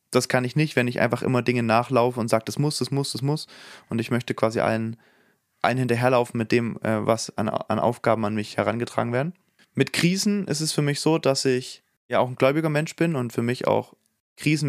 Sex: male